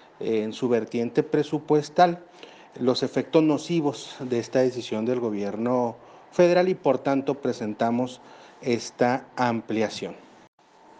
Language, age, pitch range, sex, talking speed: Spanish, 40-59, 115-150 Hz, male, 105 wpm